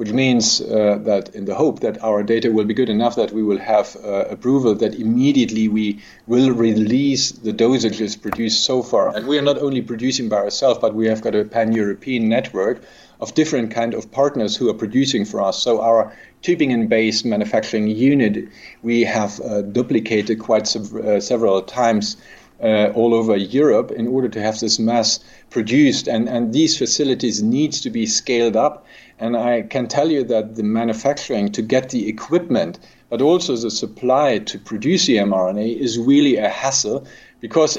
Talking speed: 180 wpm